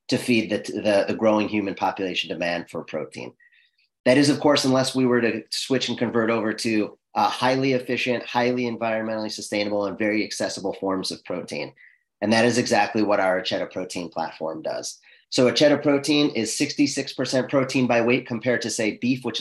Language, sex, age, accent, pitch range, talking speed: English, male, 30-49, American, 110-130 Hz, 180 wpm